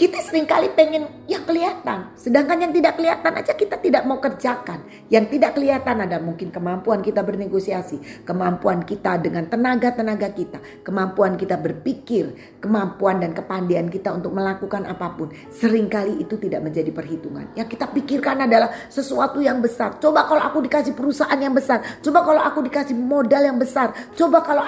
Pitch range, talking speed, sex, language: 170-265 Hz, 160 wpm, female, Indonesian